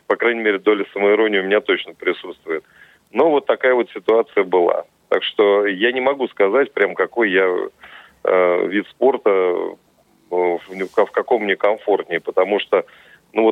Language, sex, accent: Russian, male, native